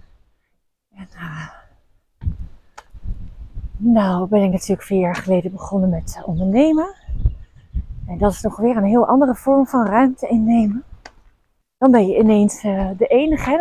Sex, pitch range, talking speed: female, 185-245 Hz, 140 wpm